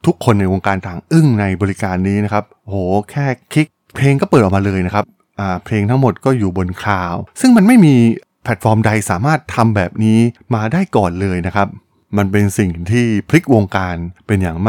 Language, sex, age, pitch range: Thai, male, 20-39, 100-130 Hz